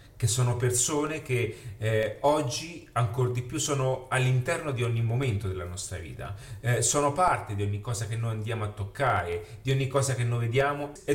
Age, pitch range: 30-49, 105-135 Hz